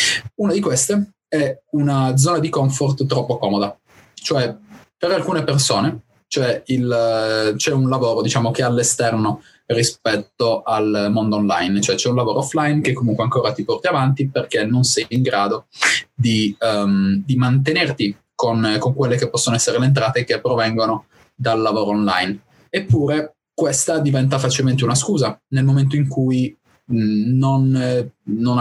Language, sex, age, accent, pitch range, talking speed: Italian, male, 20-39, native, 110-135 Hz, 155 wpm